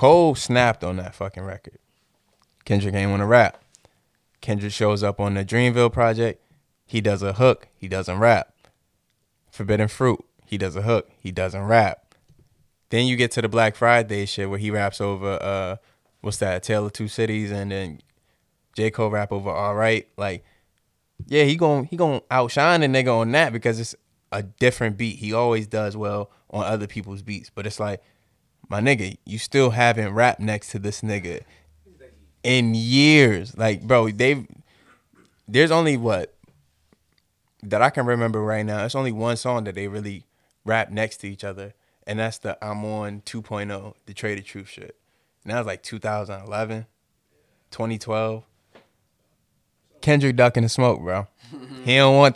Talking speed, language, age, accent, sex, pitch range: 170 wpm, English, 20-39, American, male, 100-120 Hz